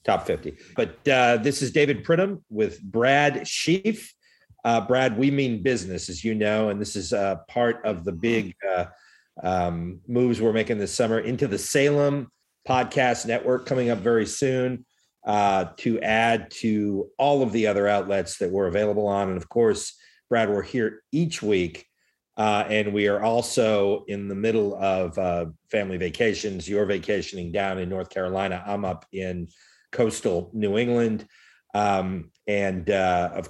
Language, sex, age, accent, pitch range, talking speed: English, male, 40-59, American, 95-120 Hz, 165 wpm